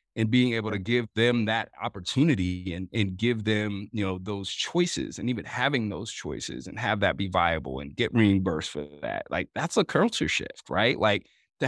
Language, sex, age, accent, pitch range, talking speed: English, male, 30-49, American, 100-115 Hz, 200 wpm